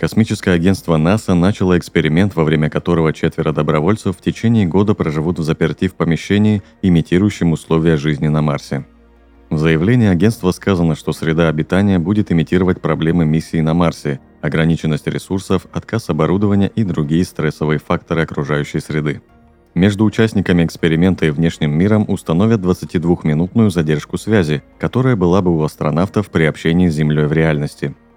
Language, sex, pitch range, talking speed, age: Russian, male, 80-95 Hz, 145 wpm, 30-49